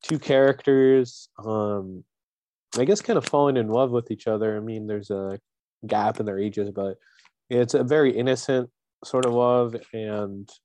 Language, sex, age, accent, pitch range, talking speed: English, male, 20-39, American, 100-120 Hz, 170 wpm